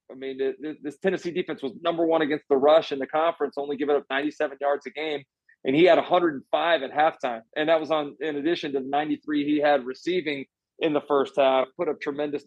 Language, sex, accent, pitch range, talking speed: English, male, American, 140-160 Hz, 230 wpm